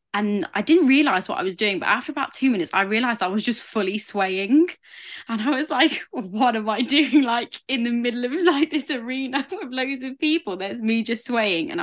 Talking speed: 230 wpm